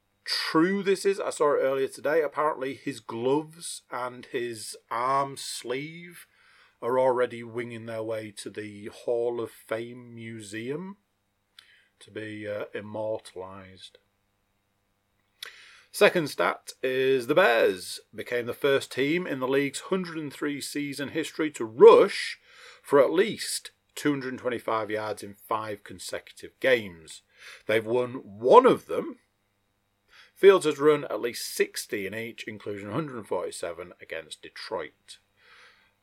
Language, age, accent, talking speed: English, 40-59, British, 125 wpm